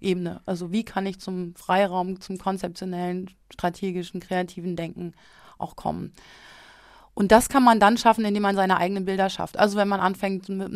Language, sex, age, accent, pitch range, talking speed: German, female, 30-49, German, 185-215 Hz, 165 wpm